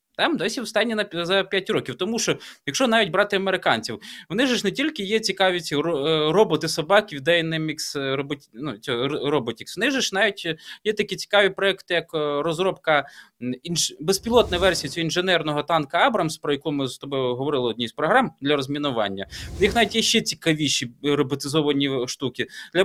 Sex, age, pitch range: male, 20-39, 155-205 Hz